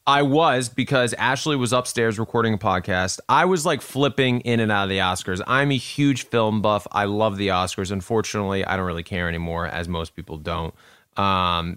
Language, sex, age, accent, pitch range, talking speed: English, male, 30-49, American, 95-135 Hz, 200 wpm